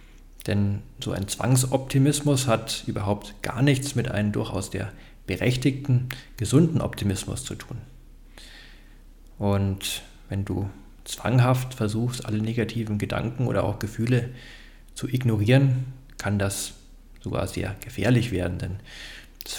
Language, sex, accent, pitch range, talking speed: German, male, German, 105-130 Hz, 115 wpm